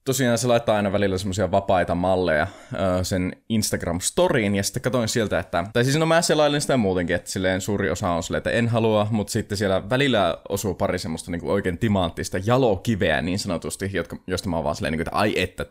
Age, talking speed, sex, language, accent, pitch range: 20-39, 200 wpm, male, Finnish, native, 95-130 Hz